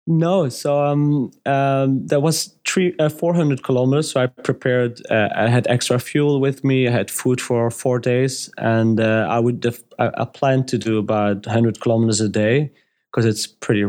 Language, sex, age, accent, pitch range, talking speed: English, male, 30-49, German, 110-125 Hz, 190 wpm